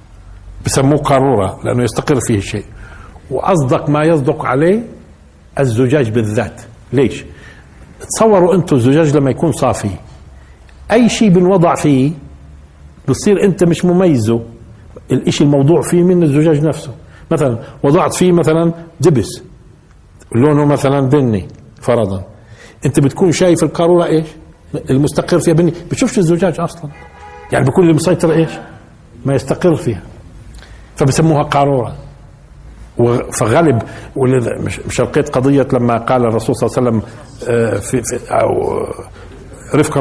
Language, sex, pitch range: Arabic, male, 115-155 Hz